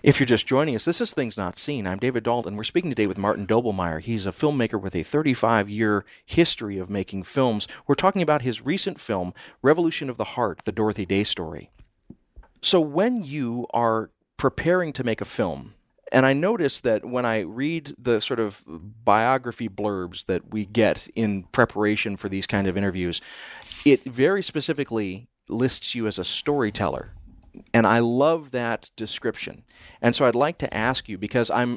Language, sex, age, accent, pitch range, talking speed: English, male, 40-59, American, 100-130 Hz, 185 wpm